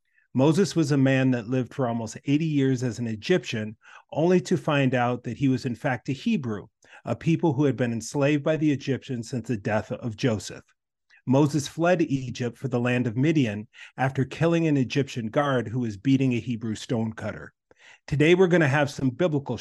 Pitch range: 120-150 Hz